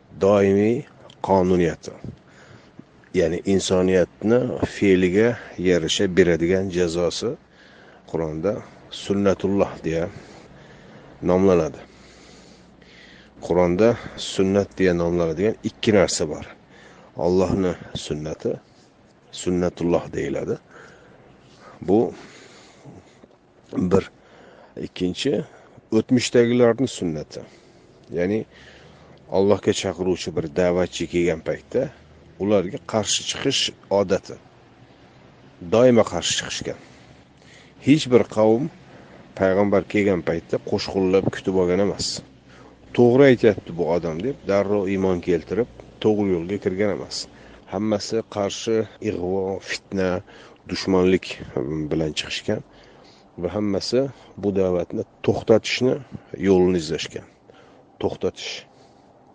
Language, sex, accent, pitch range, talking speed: Russian, male, Turkish, 90-105 Hz, 80 wpm